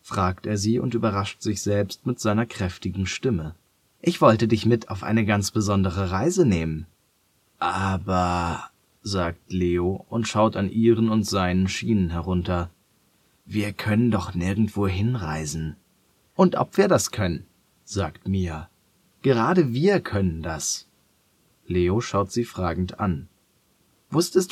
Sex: male